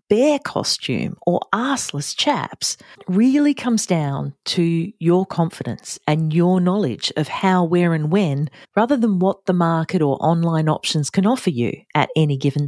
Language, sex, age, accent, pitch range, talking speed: English, female, 40-59, Australian, 155-210 Hz, 155 wpm